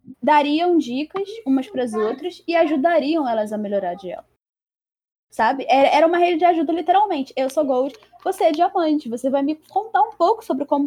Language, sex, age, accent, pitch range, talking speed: Portuguese, female, 10-29, Brazilian, 240-315 Hz, 190 wpm